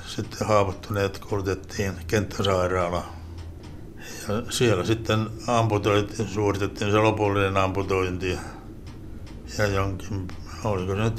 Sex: male